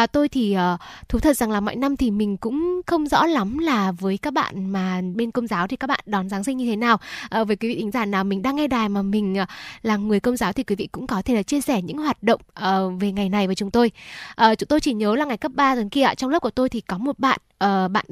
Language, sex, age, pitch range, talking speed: Vietnamese, female, 10-29, 200-260 Hz, 300 wpm